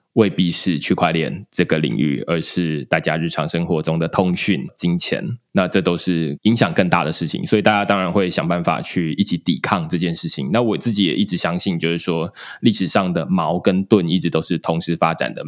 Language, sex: Chinese, male